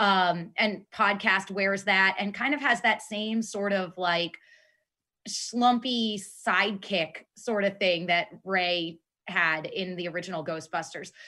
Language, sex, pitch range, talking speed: English, female, 185-230 Hz, 140 wpm